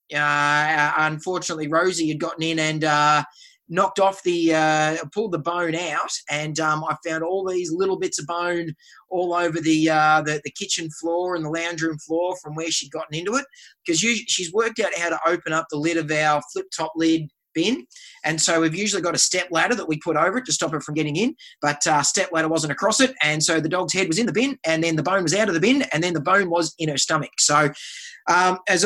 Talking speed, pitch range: 240 wpm, 160-200 Hz